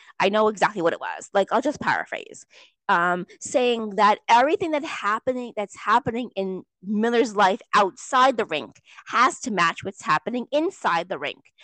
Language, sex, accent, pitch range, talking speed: English, female, American, 225-300 Hz, 165 wpm